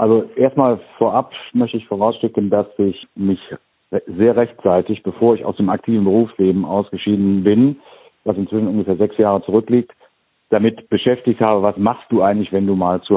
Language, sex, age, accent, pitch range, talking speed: German, male, 50-69, German, 95-115 Hz, 165 wpm